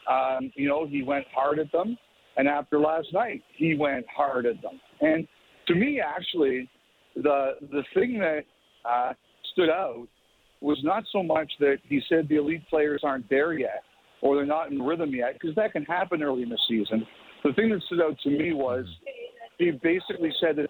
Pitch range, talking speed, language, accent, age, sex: 140-170 Hz, 195 wpm, English, American, 50-69, male